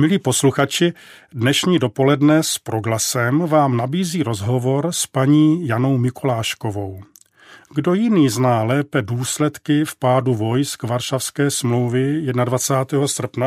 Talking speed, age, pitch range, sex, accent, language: 110 wpm, 40-59, 120-150 Hz, male, native, Czech